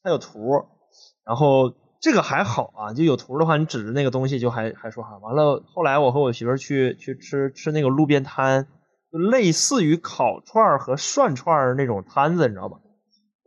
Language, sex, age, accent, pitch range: Chinese, male, 20-39, native, 130-190 Hz